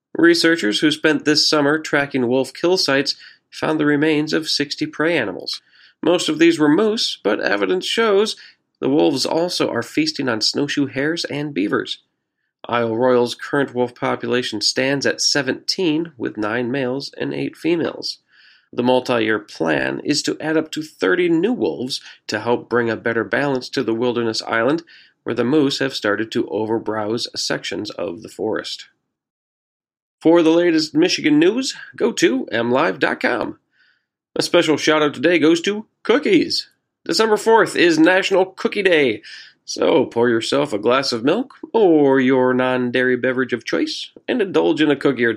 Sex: male